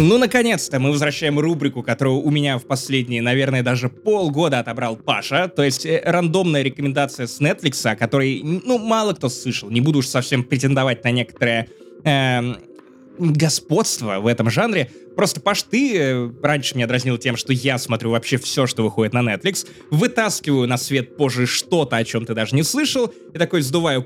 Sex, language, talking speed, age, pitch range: male, Russian, 175 wpm, 20-39, 125-175 Hz